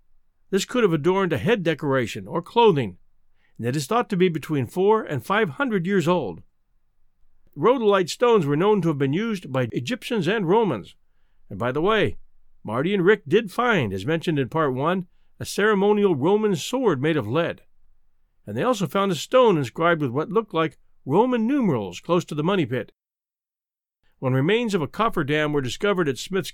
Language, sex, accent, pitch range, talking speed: English, male, American, 145-210 Hz, 190 wpm